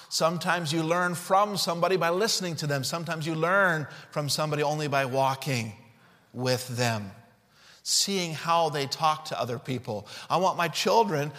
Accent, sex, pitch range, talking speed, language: American, male, 145-195 Hz, 160 wpm, English